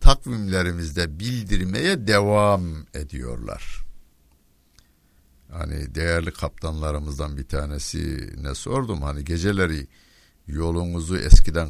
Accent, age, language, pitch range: native, 60-79, Turkish, 70-95 Hz